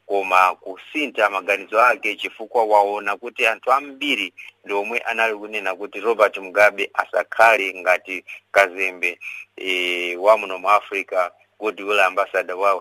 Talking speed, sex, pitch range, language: 110 wpm, male, 95-105 Hz, English